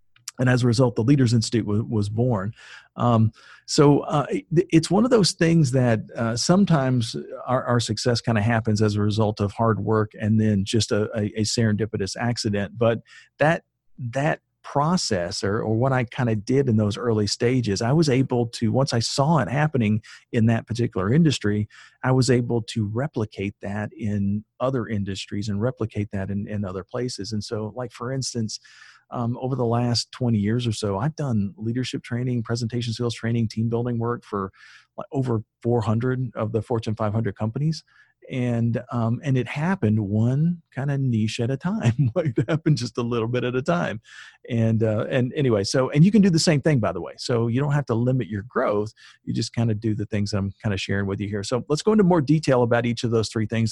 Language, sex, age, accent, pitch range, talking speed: English, male, 40-59, American, 110-130 Hz, 210 wpm